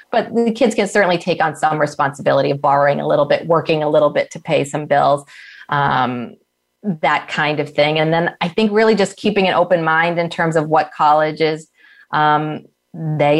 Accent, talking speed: American, 195 wpm